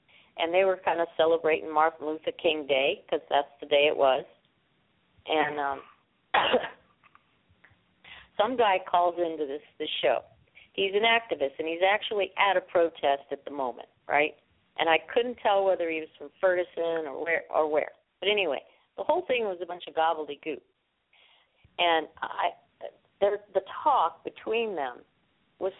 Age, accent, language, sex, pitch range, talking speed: 50-69, American, English, female, 160-195 Hz, 155 wpm